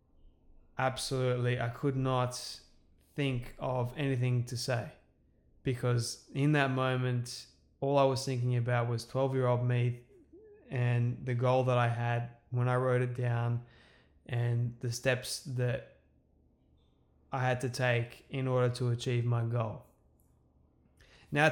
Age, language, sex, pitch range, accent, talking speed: 20-39, English, male, 120-135 Hz, Australian, 135 wpm